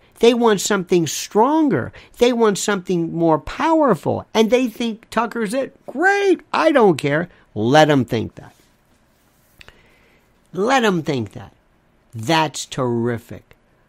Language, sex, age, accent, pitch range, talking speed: English, male, 50-69, American, 140-205 Hz, 120 wpm